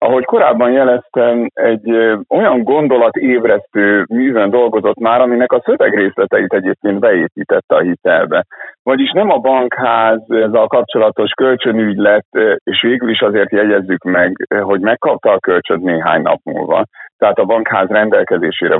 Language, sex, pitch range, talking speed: Hungarian, male, 105-145 Hz, 130 wpm